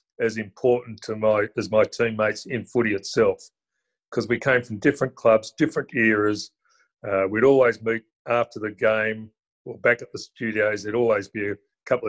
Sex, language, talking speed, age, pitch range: male, English, 175 wpm, 40-59, 110-130 Hz